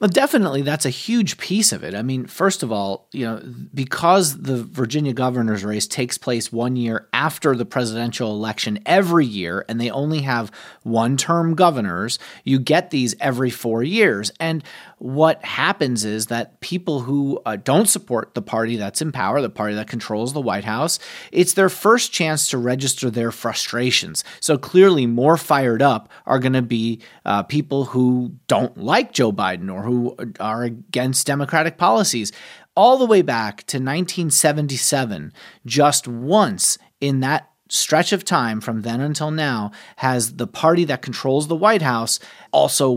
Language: English